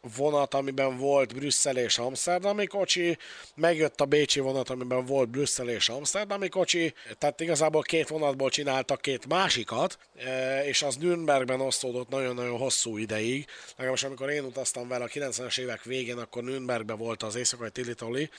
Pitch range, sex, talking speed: 120-145 Hz, male, 155 wpm